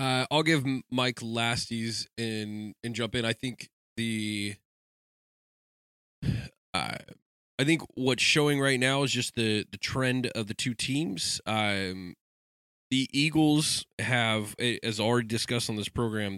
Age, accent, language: 20-39, American, English